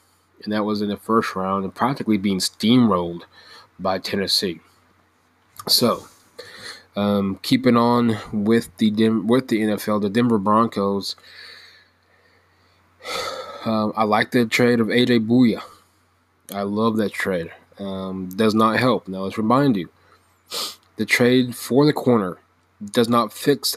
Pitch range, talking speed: 95-120 Hz, 135 wpm